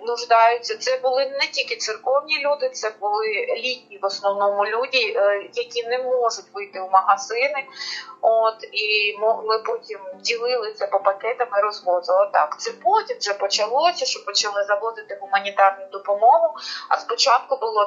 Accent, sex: native, female